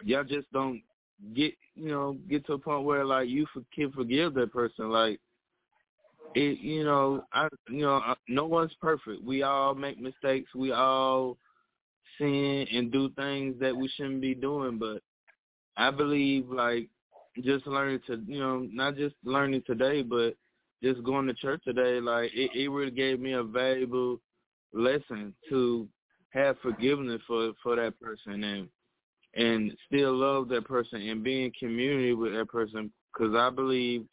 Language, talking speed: English, 165 wpm